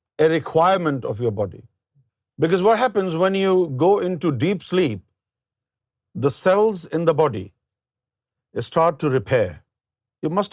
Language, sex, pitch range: Urdu, male, 120-165 Hz